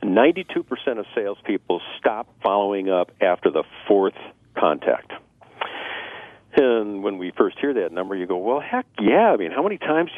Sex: male